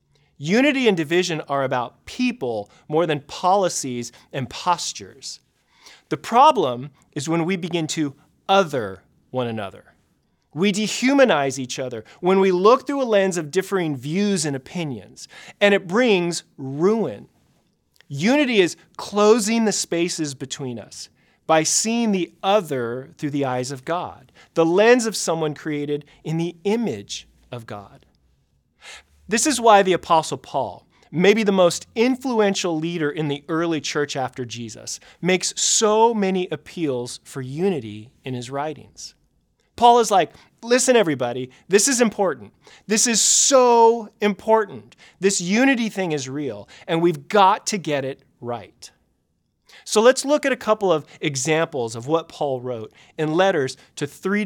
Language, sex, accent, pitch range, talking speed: English, male, American, 140-205 Hz, 145 wpm